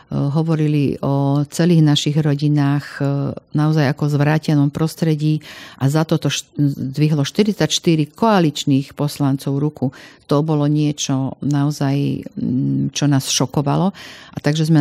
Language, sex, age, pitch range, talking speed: Slovak, female, 50-69, 145-160 Hz, 120 wpm